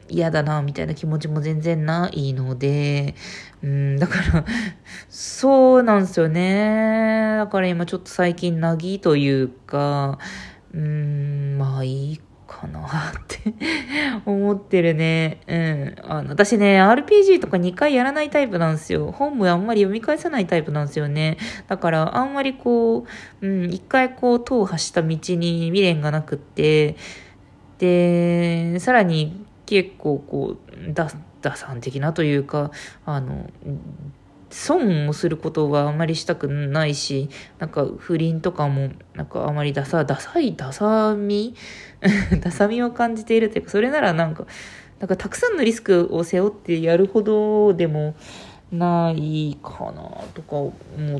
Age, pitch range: 20-39, 150-205 Hz